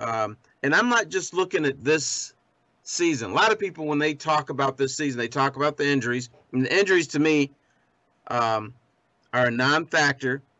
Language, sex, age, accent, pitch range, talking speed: English, male, 40-59, American, 125-155 Hz, 185 wpm